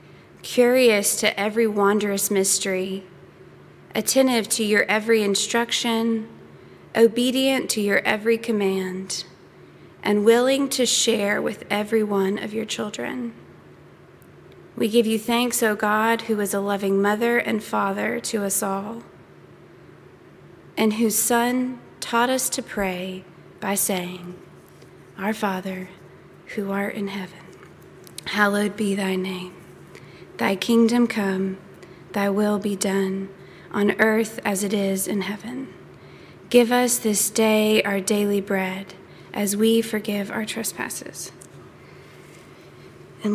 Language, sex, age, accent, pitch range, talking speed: English, female, 20-39, American, 195-230 Hz, 120 wpm